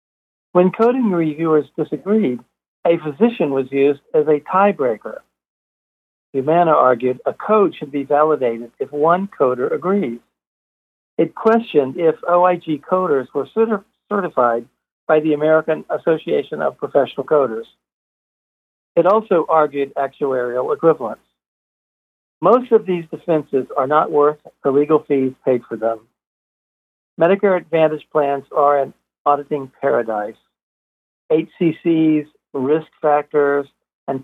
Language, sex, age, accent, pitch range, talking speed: English, male, 60-79, American, 135-175 Hz, 115 wpm